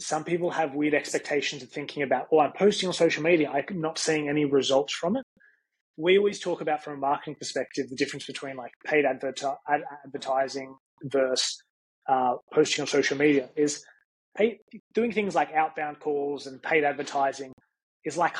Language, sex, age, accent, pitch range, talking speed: English, male, 20-39, Australian, 140-170 Hz, 170 wpm